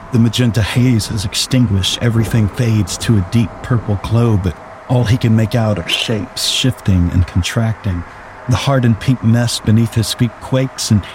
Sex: male